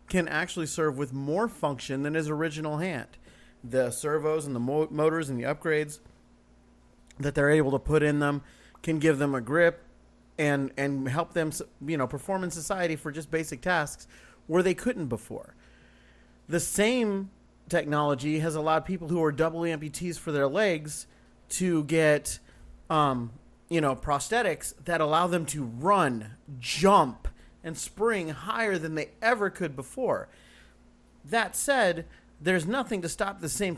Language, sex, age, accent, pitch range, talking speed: English, male, 30-49, American, 140-180 Hz, 160 wpm